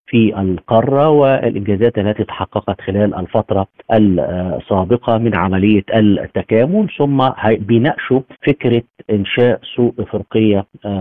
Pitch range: 100-115 Hz